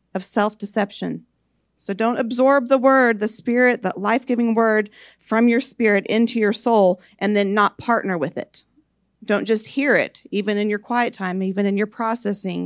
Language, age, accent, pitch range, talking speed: English, 40-59, American, 195-240 Hz, 175 wpm